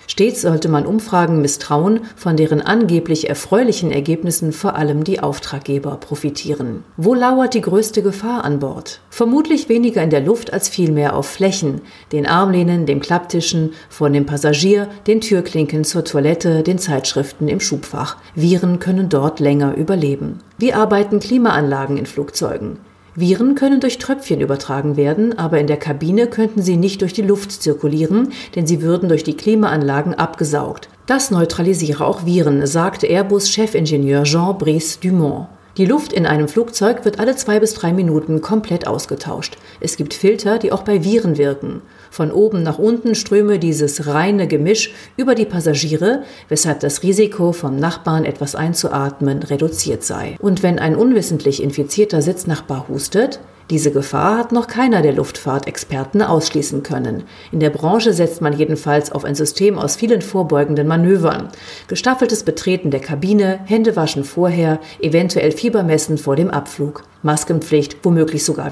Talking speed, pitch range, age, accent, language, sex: 150 wpm, 150-205 Hz, 50-69, German, German, female